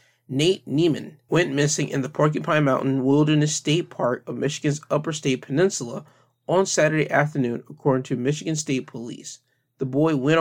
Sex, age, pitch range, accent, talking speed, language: male, 20-39, 130-160 Hz, American, 155 wpm, English